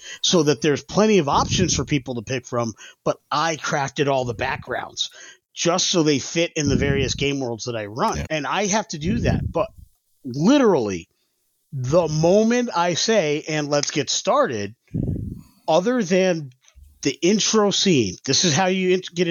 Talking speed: 170 wpm